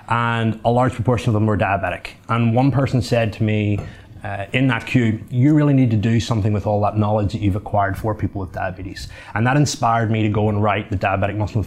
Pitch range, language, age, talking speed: 105-120 Hz, English, 30-49, 240 wpm